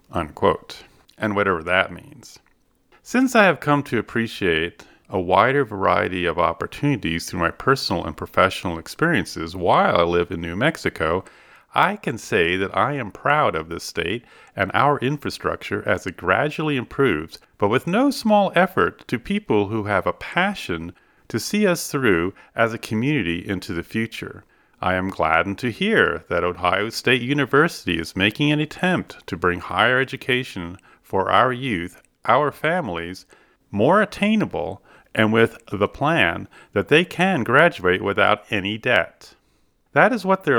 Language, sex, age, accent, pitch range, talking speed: English, male, 40-59, American, 95-150 Hz, 155 wpm